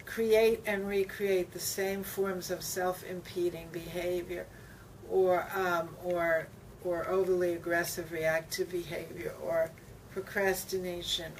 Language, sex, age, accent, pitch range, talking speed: English, female, 60-79, American, 160-185 Hz, 100 wpm